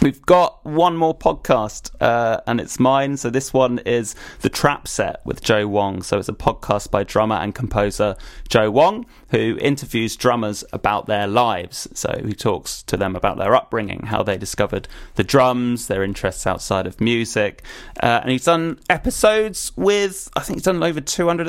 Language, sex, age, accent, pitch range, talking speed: English, male, 30-49, British, 110-140 Hz, 180 wpm